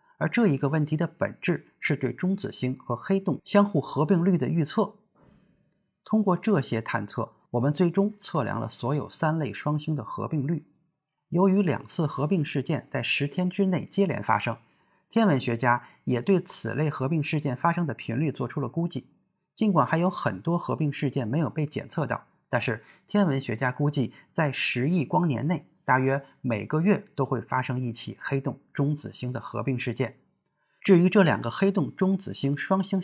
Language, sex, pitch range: Chinese, male, 125-180 Hz